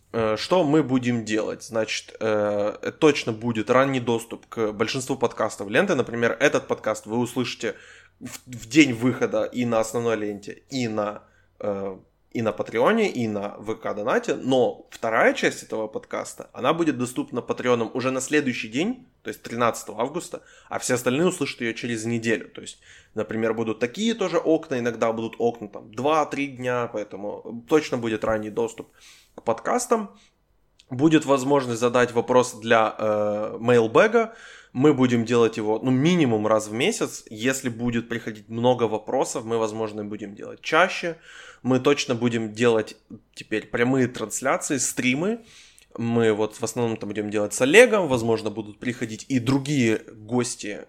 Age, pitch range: 20-39, 110-130 Hz